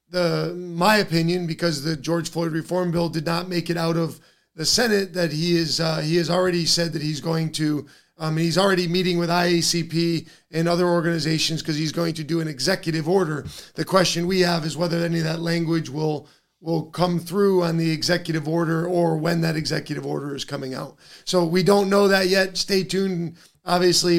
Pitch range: 160-180 Hz